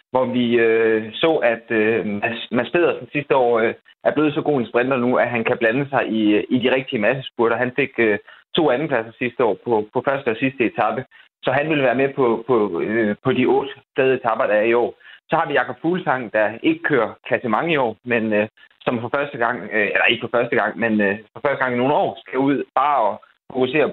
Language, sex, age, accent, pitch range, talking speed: Danish, male, 20-39, native, 110-135 Hz, 235 wpm